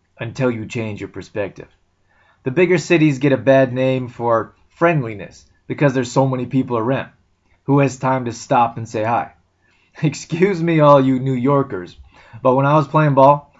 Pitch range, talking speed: 120-145 Hz, 175 wpm